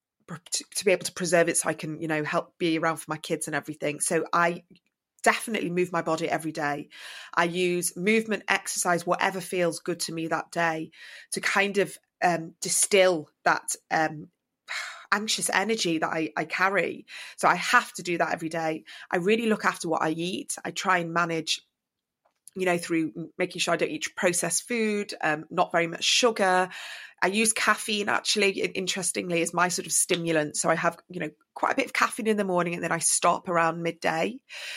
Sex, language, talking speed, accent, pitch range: female, English, 195 wpm, British, 160-185 Hz